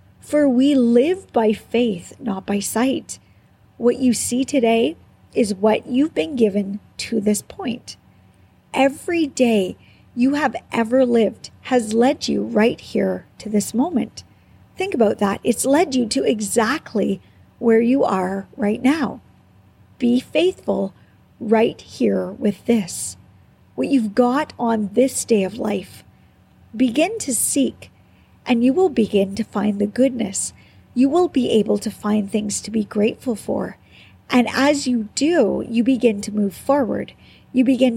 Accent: American